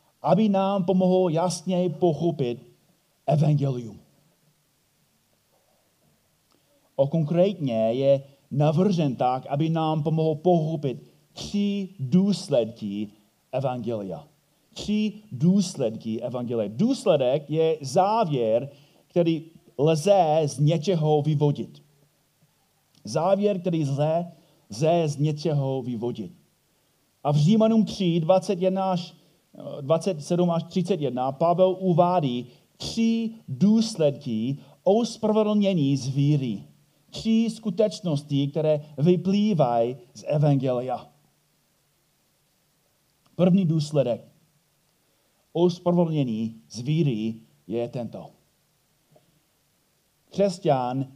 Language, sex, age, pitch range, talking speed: Czech, male, 30-49, 135-180 Hz, 75 wpm